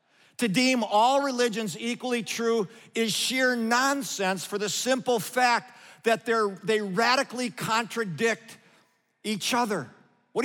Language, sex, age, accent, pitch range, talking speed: English, male, 50-69, American, 190-245 Hz, 120 wpm